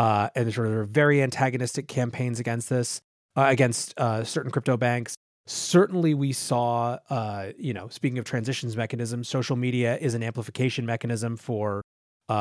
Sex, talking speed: male, 165 wpm